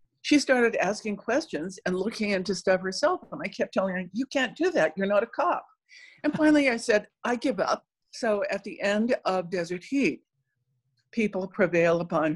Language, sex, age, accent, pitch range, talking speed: English, female, 60-79, American, 160-220 Hz, 190 wpm